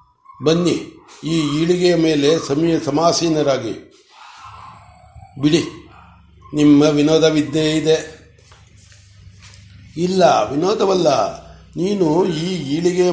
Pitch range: 135-170 Hz